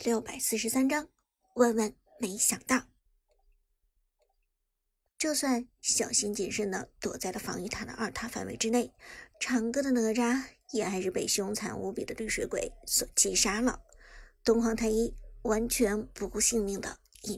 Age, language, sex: 50-69, Chinese, male